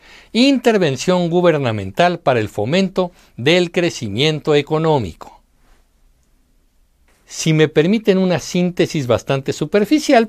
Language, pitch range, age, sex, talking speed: Spanish, 135-200 Hz, 60-79, male, 85 wpm